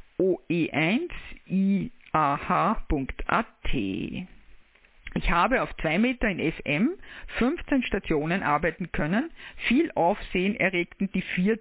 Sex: female